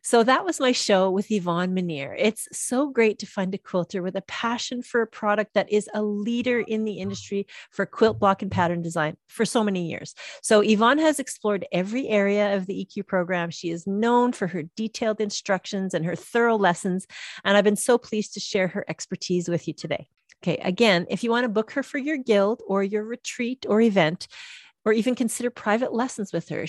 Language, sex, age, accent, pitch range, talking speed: English, female, 40-59, American, 180-230 Hz, 210 wpm